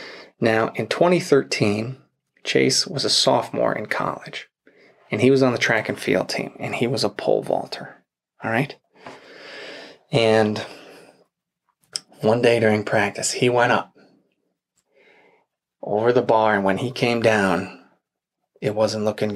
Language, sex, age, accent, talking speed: English, male, 30-49, American, 140 wpm